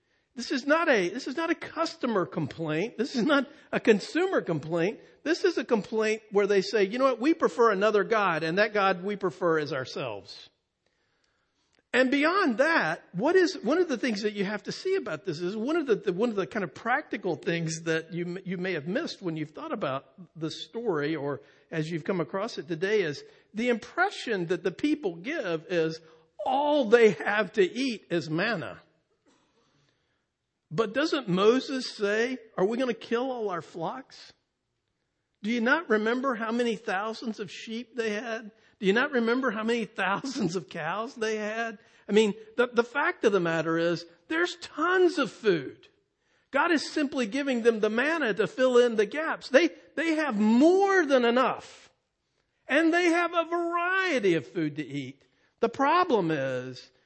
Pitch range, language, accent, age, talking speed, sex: 175-280 Hz, English, American, 50-69, 185 wpm, male